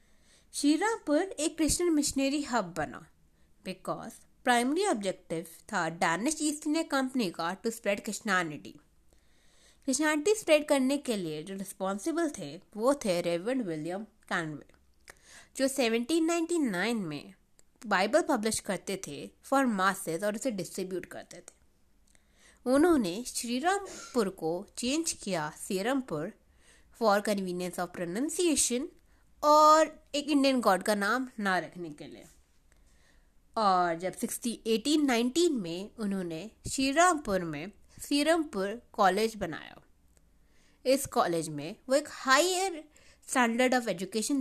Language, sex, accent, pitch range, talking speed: Hindi, female, native, 175-290 Hz, 115 wpm